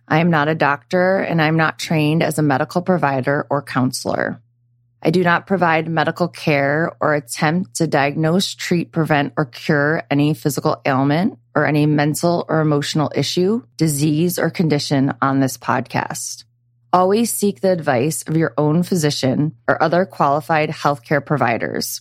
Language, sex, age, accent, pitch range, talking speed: English, female, 20-39, American, 140-175 Hz, 155 wpm